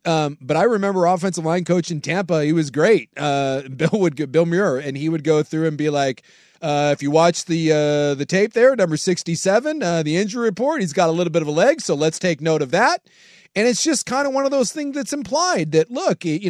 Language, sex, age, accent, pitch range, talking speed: English, male, 30-49, American, 155-215 Hz, 250 wpm